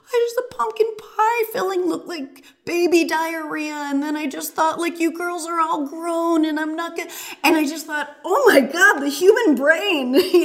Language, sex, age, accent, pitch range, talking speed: English, female, 30-49, American, 200-295 Hz, 205 wpm